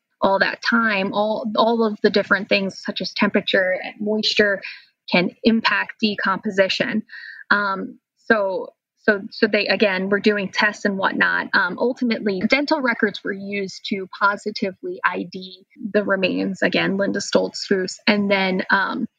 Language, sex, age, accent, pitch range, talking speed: English, female, 10-29, American, 195-225 Hz, 145 wpm